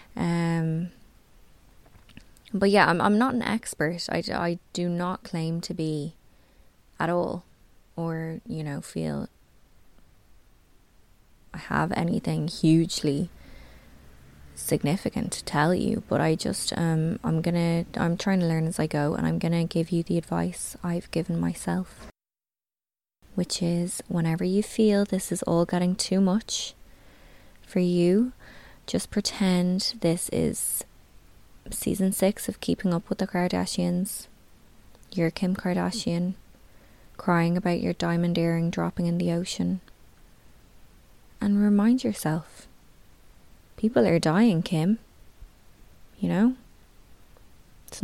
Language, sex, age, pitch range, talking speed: English, female, 20-39, 165-200 Hz, 125 wpm